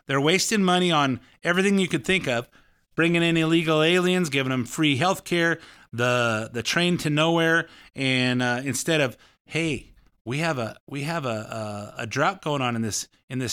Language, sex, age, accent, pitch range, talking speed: English, male, 30-49, American, 125-165 Hz, 185 wpm